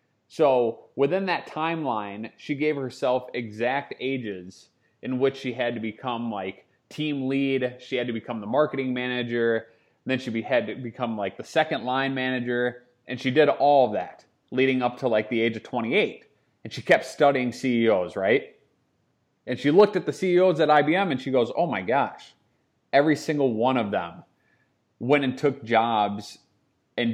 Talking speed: 175 wpm